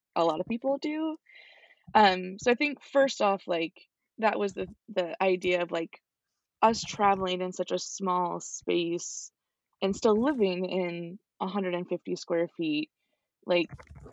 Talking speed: 145 wpm